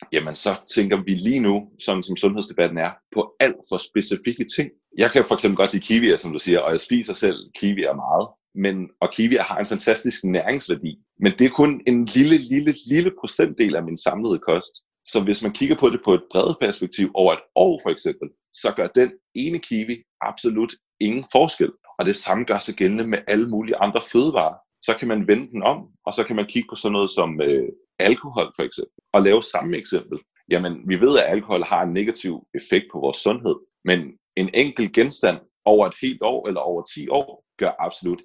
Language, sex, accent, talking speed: Danish, male, native, 210 wpm